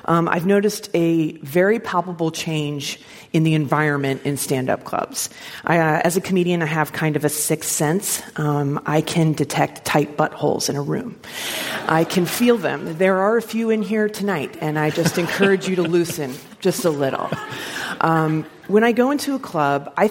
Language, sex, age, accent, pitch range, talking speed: English, female, 30-49, American, 150-190 Hz, 190 wpm